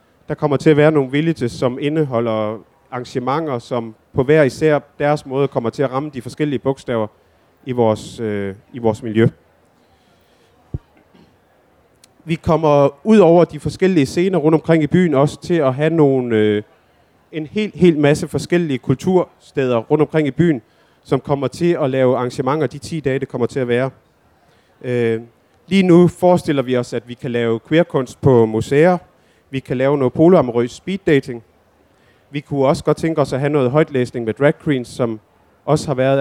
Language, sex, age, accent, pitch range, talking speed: Danish, male, 30-49, native, 125-155 Hz, 175 wpm